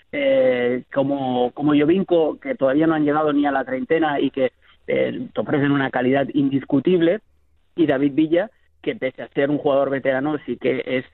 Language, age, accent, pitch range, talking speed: Spanish, 30-49, Spanish, 130-155 Hz, 185 wpm